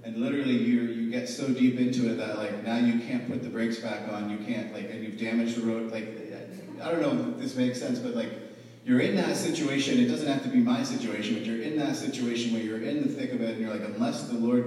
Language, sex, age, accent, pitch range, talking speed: English, male, 30-49, American, 115-160 Hz, 270 wpm